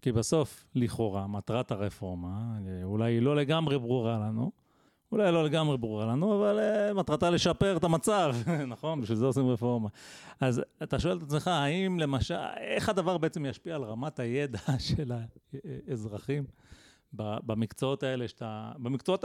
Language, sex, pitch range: Hebrew, male, 120-155 Hz